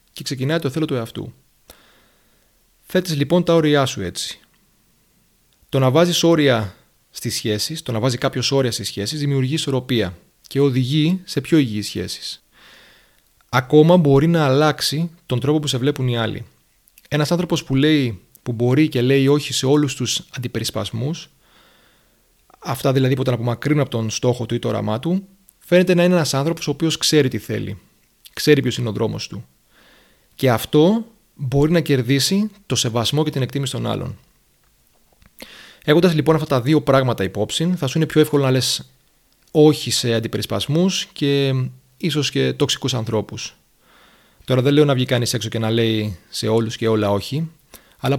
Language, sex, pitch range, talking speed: Greek, male, 120-155 Hz, 170 wpm